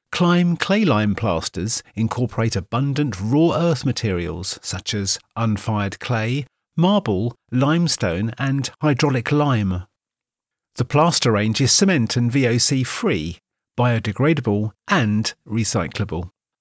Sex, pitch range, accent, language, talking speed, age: male, 105-145 Hz, British, English, 105 wpm, 50-69